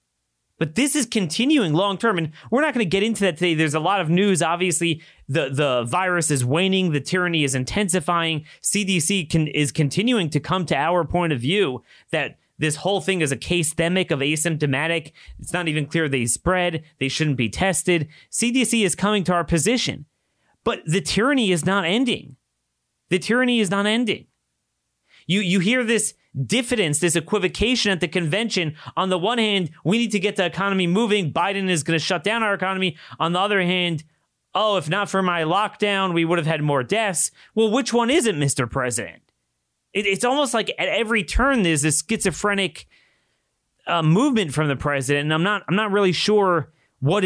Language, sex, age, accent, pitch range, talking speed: English, male, 30-49, American, 150-200 Hz, 190 wpm